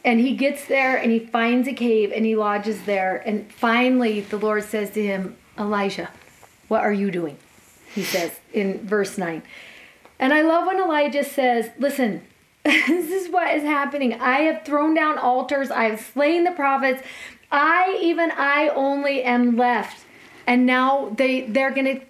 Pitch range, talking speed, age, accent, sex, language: 215-275 Hz, 170 wpm, 30-49, American, female, English